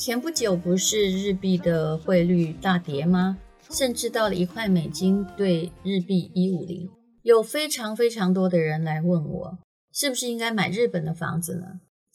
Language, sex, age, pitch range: Chinese, female, 30-49, 175-210 Hz